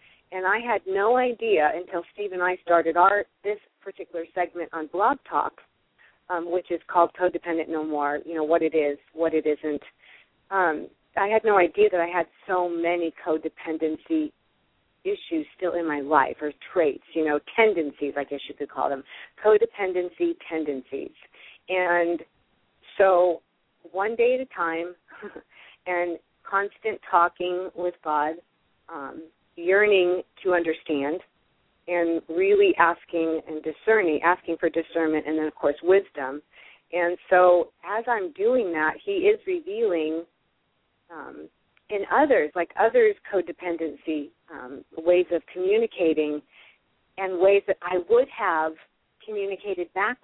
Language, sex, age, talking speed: English, female, 40-59, 140 wpm